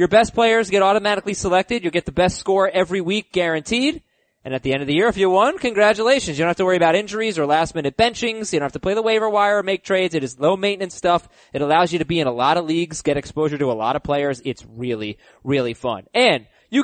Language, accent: English, American